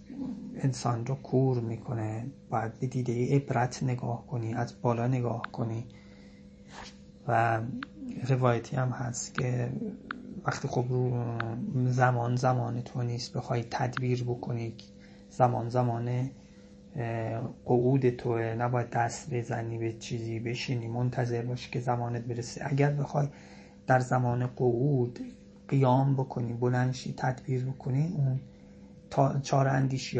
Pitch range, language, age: 120-130 Hz, Persian, 30-49